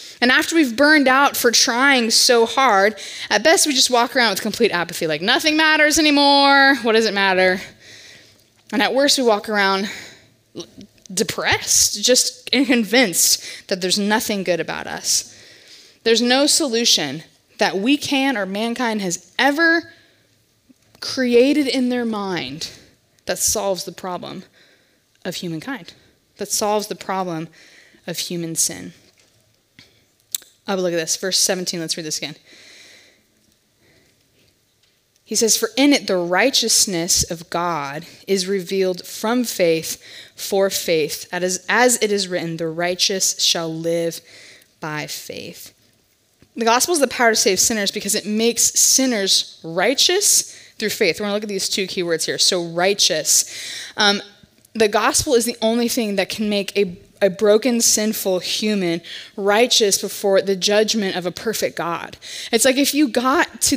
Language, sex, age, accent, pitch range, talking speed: English, female, 20-39, American, 180-240 Hz, 150 wpm